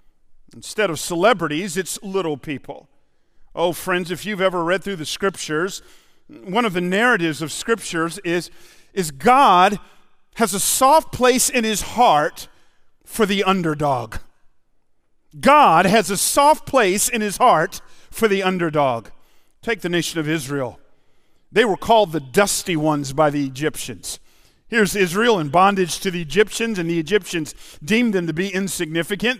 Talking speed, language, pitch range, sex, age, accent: 150 wpm, English, 170-225 Hz, male, 50-69, American